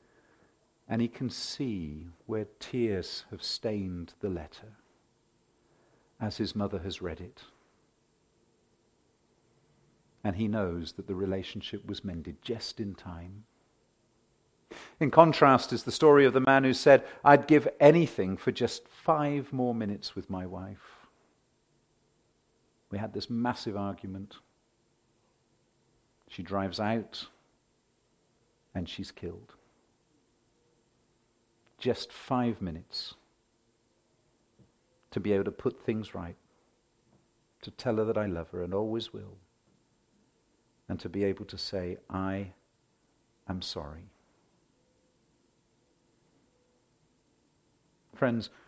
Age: 50-69